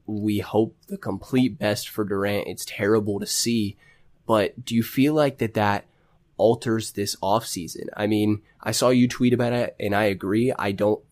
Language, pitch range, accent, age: English, 105-120 Hz, American, 20-39